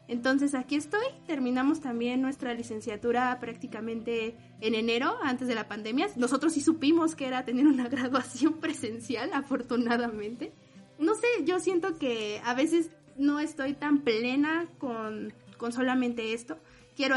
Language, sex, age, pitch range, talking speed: Spanish, female, 20-39, 235-280 Hz, 140 wpm